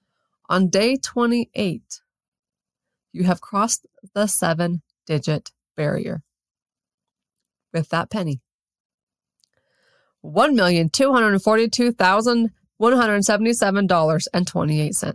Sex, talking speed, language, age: female, 55 wpm, English, 20-39